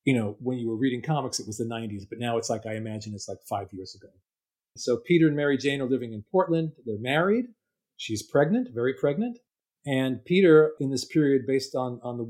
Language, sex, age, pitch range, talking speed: English, male, 40-59, 115-135 Hz, 225 wpm